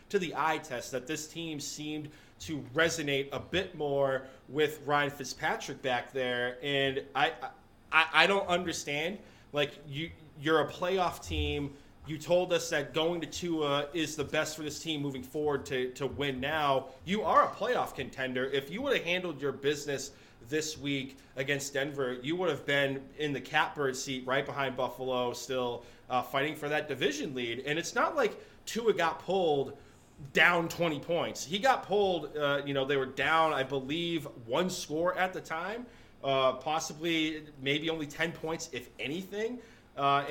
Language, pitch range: English, 135-165 Hz